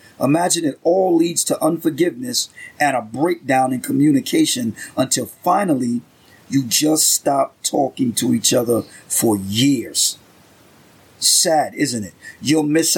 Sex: male